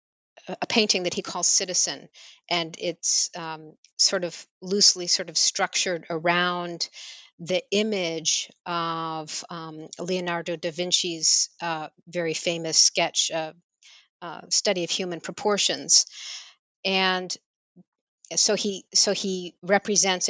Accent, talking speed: American, 115 wpm